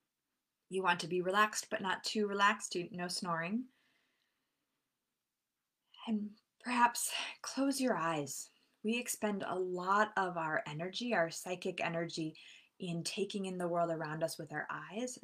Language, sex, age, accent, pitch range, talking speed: English, female, 20-39, American, 160-195 Hz, 140 wpm